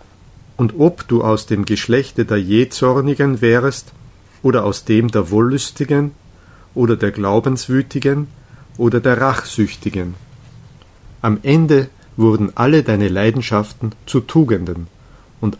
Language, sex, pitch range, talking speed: German, male, 105-130 Hz, 110 wpm